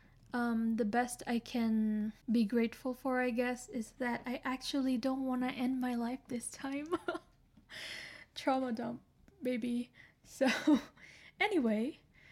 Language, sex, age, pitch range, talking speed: English, female, 10-29, 225-250 Hz, 130 wpm